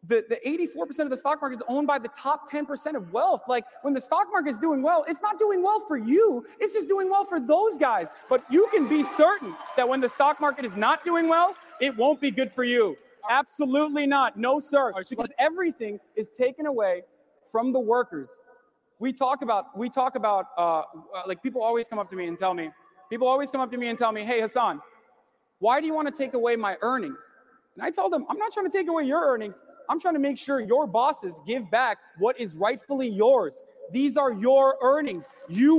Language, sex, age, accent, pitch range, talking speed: English, male, 30-49, American, 225-295 Hz, 225 wpm